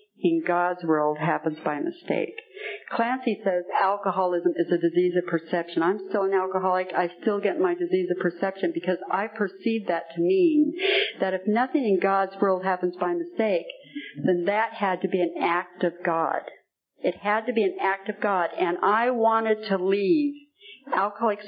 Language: English